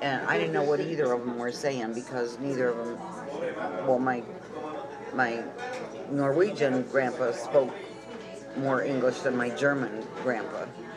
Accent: American